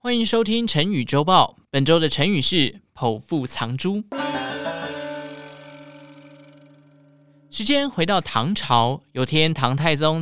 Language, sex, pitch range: Chinese, male, 130-195 Hz